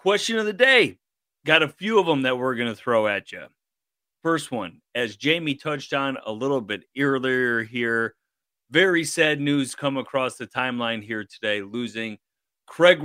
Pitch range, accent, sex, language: 115-140 Hz, American, male, English